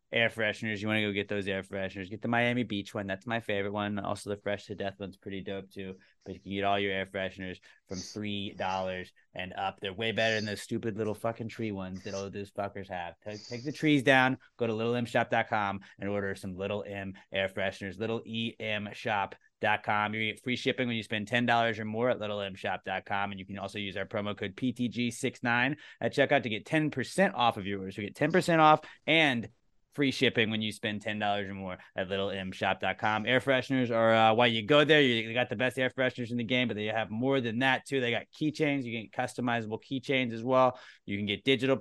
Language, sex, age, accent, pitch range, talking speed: English, male, 20-39, American, 100-125 Hz, 215 wpm